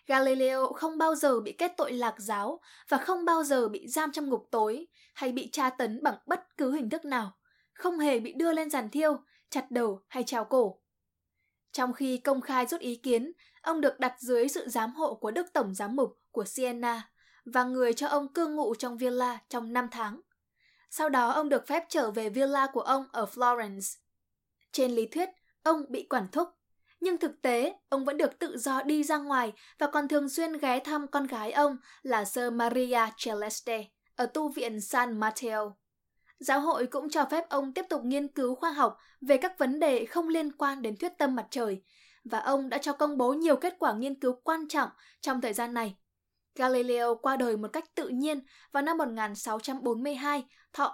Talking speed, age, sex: 205 wpm, 10-29, female